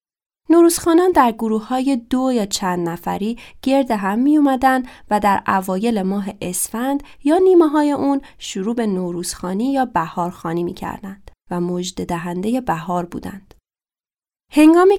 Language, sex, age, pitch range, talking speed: Persian, female, 20-39, 195-265 Hz, 125 wpm